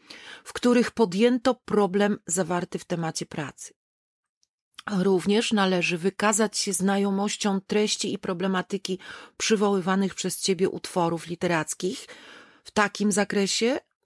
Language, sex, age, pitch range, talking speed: Polish, female, 40-59, 190-210 Hz, 100 wpm